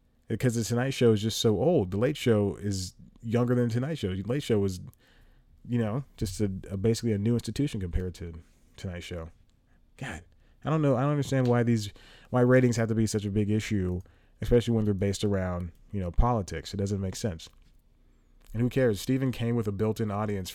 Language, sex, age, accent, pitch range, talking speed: English, male, 30-49, American, 100-120 Hz, 215 wpm